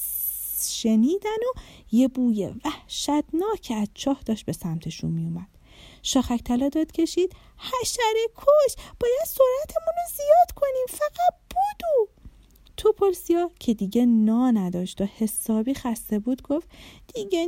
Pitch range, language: 240-335 Hz, Persian